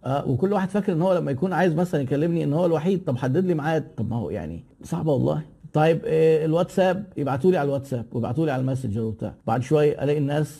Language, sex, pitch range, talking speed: Arabic, male, 125-160 Hz, 210 wpm